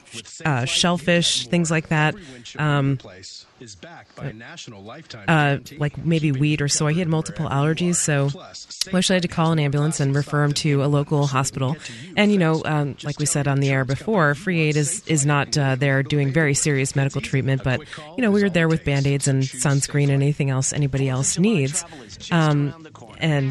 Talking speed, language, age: 180 wpm, English, 30-49